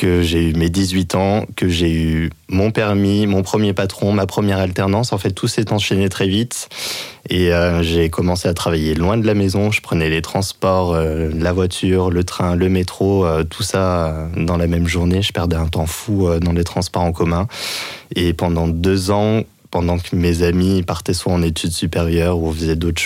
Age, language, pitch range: 20-39, French, 85-100 Hz